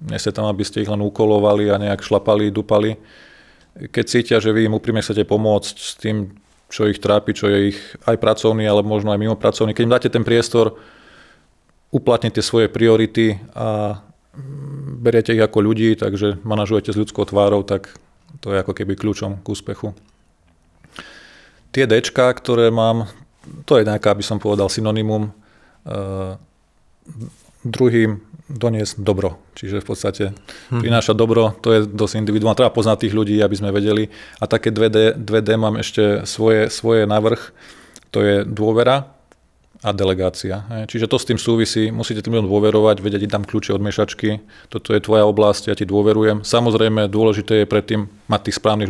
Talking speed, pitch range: 165 wpm, 105-110 Hz